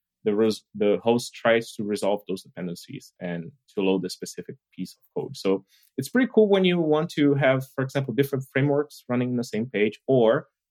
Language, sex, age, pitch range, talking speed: English, male, 20-39, 95-120 Hz, 190 wpm